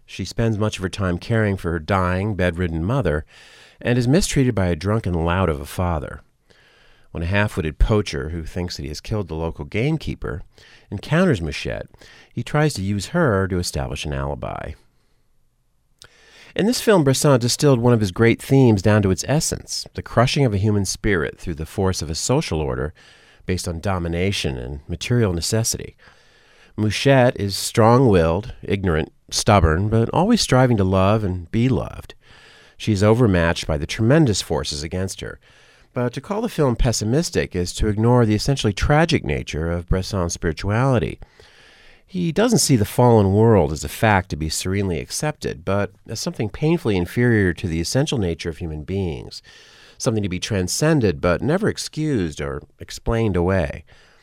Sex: male